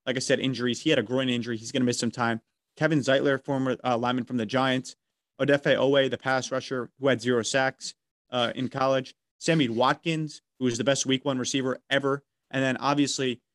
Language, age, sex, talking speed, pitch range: English, 30-49, male, 215 wpm, 120-140 Hz